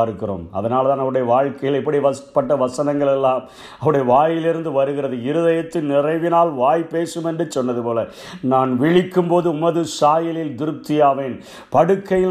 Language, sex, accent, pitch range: Tamil, male, native, 140-175 Hz